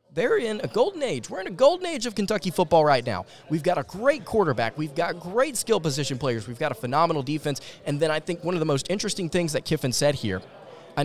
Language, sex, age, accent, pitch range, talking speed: English, male, 20-39, American, 130-160 Hz, 250 wpm